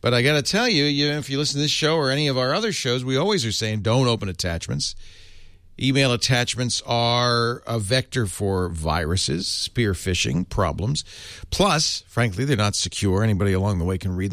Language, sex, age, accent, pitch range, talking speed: English, male, 50-69, American, 90-120 Hz, 195 wpm